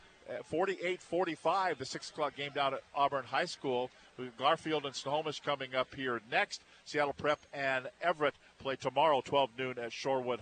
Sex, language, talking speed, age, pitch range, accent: male, English, 150 wpm, 50-69, 145-185 Hz, American